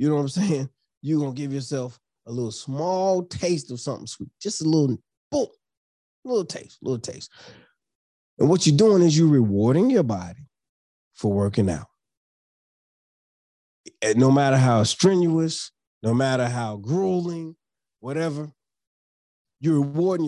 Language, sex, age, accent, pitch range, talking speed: English, male, 30-49, American, 115-175 Hz, 150 wpm